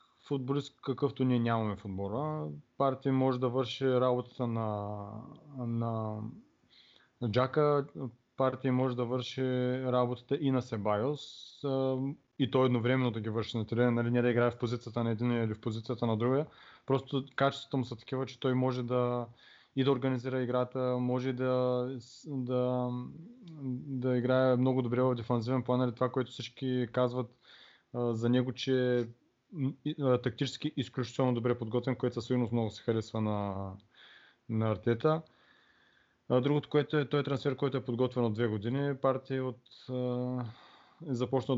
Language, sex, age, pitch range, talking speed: Bulgarian, male, 20-39, 120-135 Hz, 145 wpm